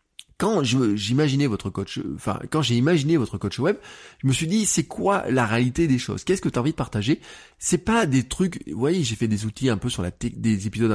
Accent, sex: French, male